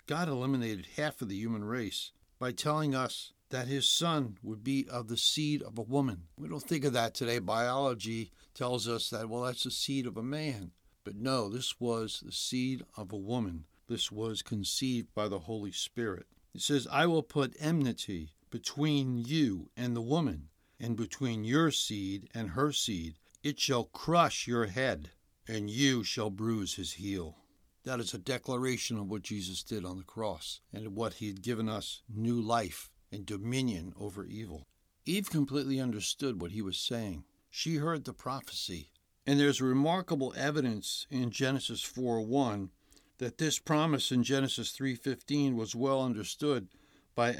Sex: male